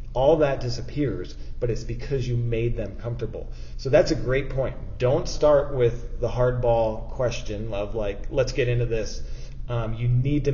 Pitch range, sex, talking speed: 110-125 Hz, male, 175 wpm